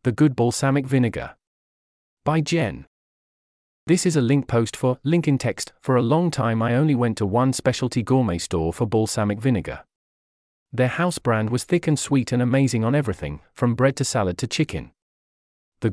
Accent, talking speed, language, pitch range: British, 180 wpm, English, 105-140 Hz